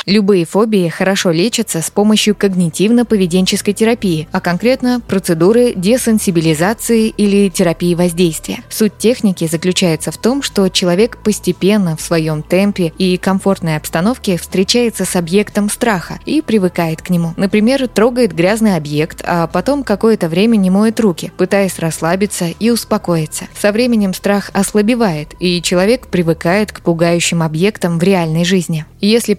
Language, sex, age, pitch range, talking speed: Russian, female, 20-39, 170-210 Hz, 135 wpm